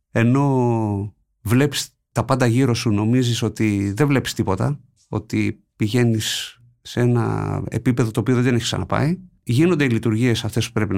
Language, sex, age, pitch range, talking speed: Greek, male, 50-69, 110-145 Hz, 150 wpm